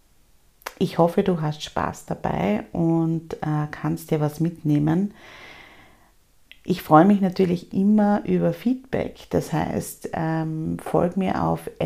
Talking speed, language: 125 wpm, German